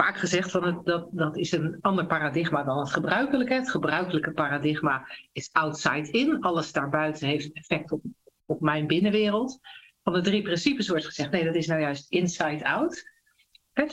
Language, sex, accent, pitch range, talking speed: Dutch, female, Dutch, 160-220 Hz, 170 wpm